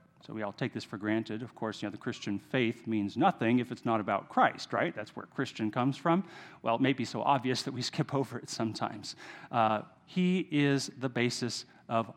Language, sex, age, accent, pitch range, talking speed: English, male, 40-59, American, 110-140 Hz, 220 wpm